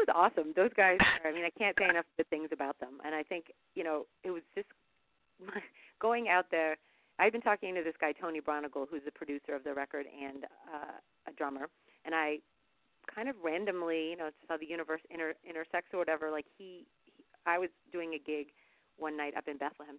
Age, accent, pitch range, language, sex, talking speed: 40-59, American, 145-175 Hz, English, female, 215 wpm